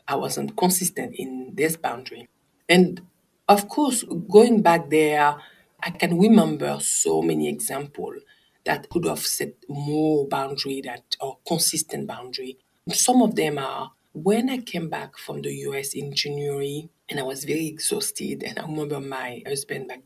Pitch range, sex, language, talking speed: 140-205 Hz, female, English, 155 wpm